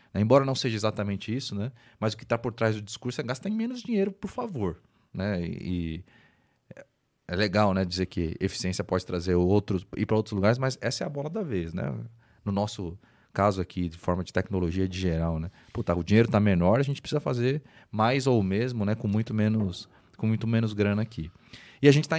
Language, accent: Portuguese, Brazilian